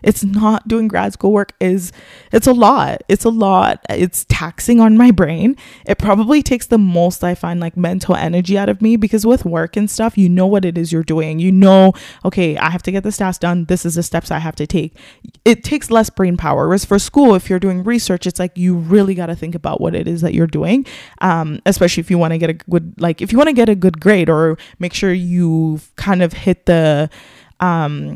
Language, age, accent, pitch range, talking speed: English, 20-39, American, 175-205 Hz, 245 wpm